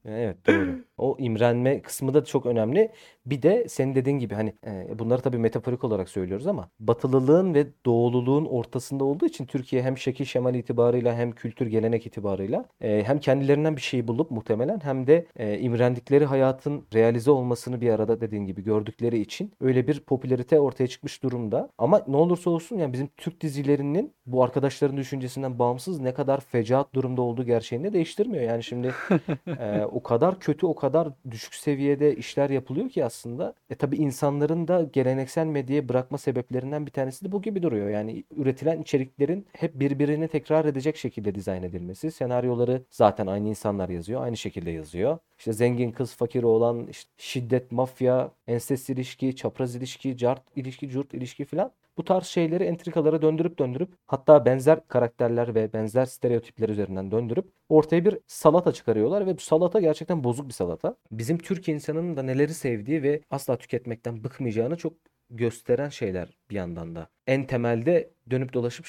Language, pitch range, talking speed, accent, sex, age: Turkish, 120-150 Hz, 165 wpm, native, male, 40-59